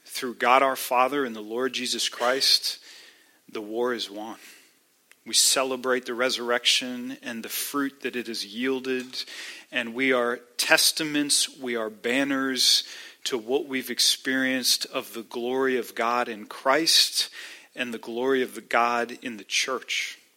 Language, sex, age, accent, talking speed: English, male, 40-59, American, 150 wpm